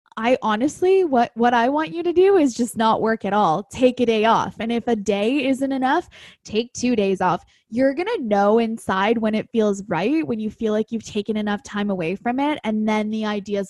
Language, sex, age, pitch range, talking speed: English, female, 10-29, 200-245 Hz, 230 wpm